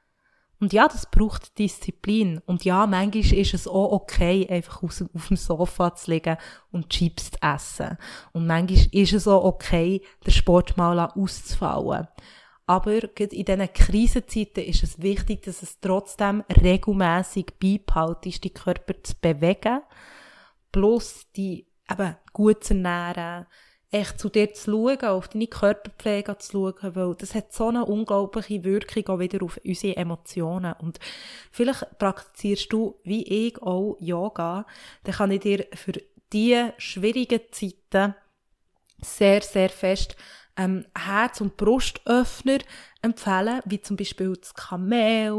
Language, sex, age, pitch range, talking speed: German, female, 20-39, 185-215 Hz, 140 wpm